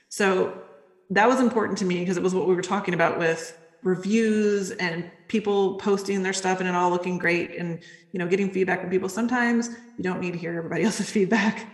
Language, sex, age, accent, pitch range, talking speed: English, female, 30-49, American, 170-205 Hz, 215 wpm